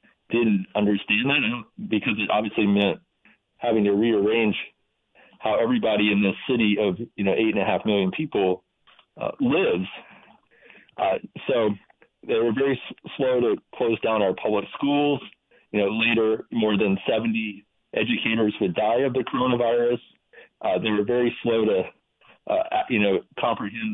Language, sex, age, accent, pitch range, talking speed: English, male, 40-59, American, 100-125 Hz, 150 wpm